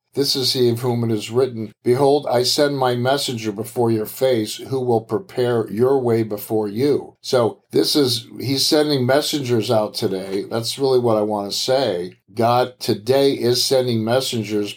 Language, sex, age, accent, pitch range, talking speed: English, male, 50-69, American, 110-130 Hz, 175 wpm